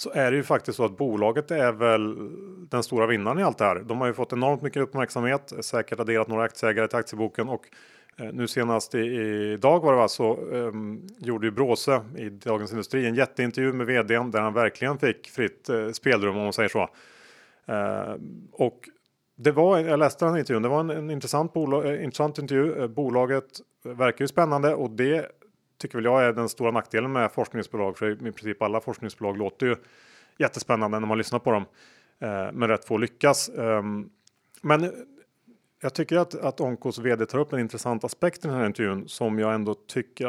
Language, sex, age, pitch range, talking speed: Swedish, male, 30-49, 110-140 Hz, 200 wpm